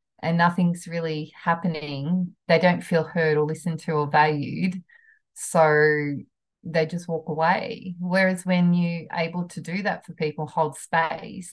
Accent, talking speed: Australian, 150 wpm